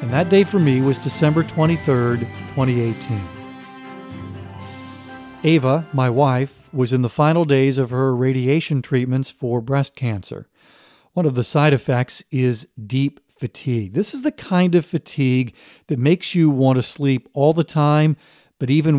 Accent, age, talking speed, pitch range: American, 50-69, 155 wpm, 125-155 Hz